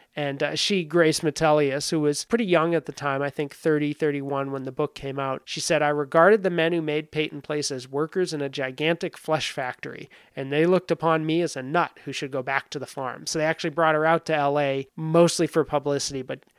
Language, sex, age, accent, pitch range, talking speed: English, male, 30-49, American, 135-160 Hz, 235 wpm